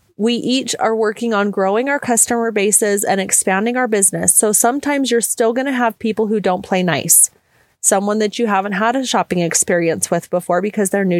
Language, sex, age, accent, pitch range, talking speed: English, female, 30-49, American, 195-245 Hz, 205 wpm